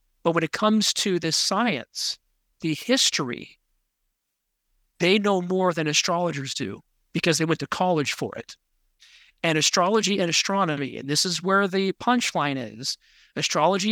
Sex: male